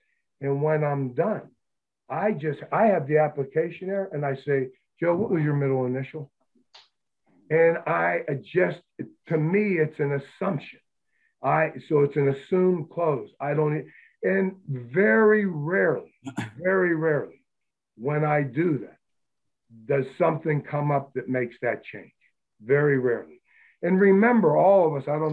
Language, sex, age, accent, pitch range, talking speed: English, male, 60-79, American, 135-180 Hz, 145 wpm